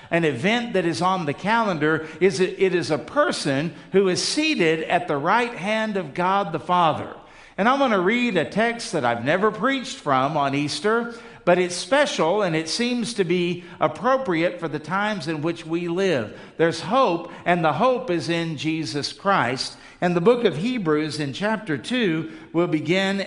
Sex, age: male, 50-69